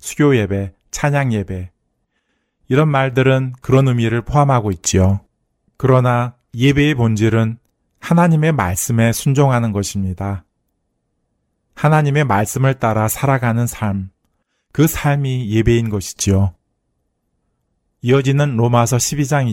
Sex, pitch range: male, 105-130 Hz